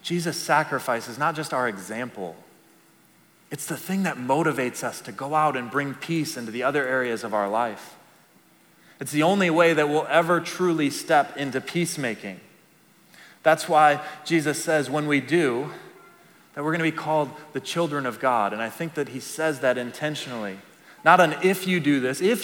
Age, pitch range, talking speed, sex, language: 30-49, 125-155 Hz, 180 wpm, male, English